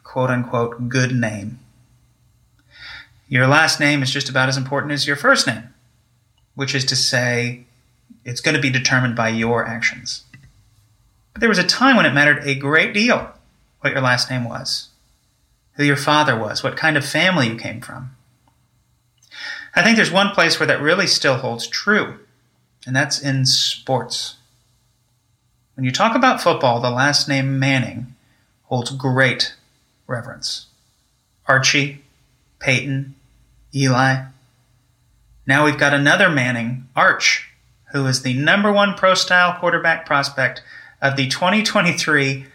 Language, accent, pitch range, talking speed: English, American, 120-145 Hz, 145 wpm